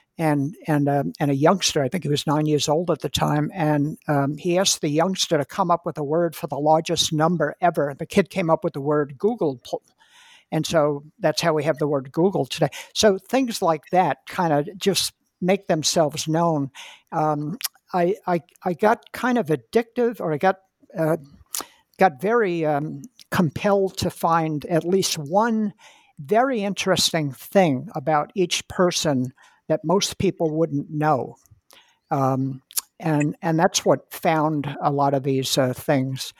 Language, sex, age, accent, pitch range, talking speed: English, male, 60-79, American, 145-185 Hz, 175 wpm